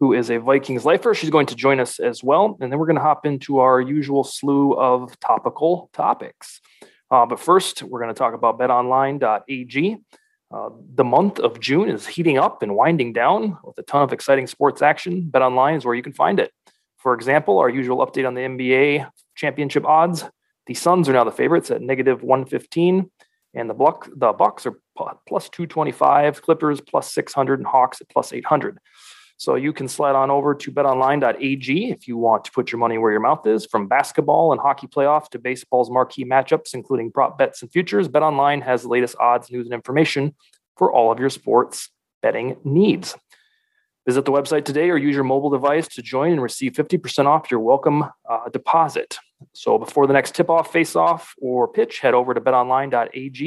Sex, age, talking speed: male, 30-49, 200 wpm